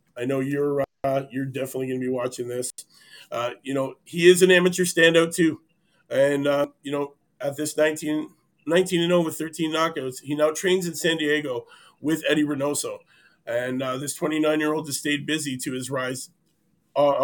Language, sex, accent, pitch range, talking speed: English, male, American, 135-165 Hz, 175 wpm